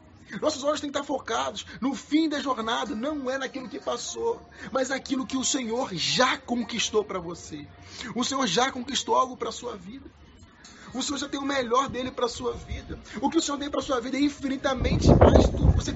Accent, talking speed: Brazilian, 220 wpm